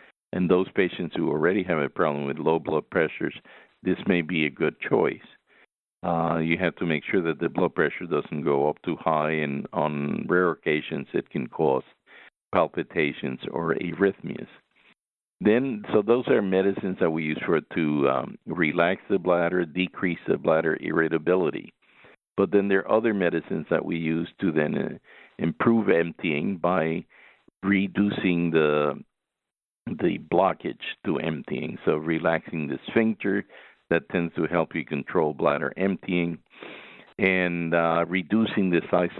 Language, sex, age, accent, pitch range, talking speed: English, male, 50-69, American, 80-95 Hz, 155 wpm